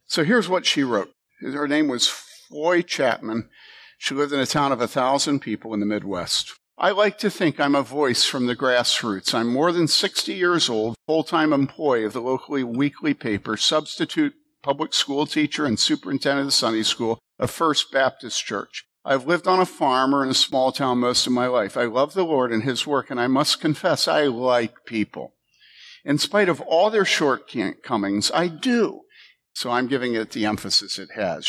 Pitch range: 125-175 Hz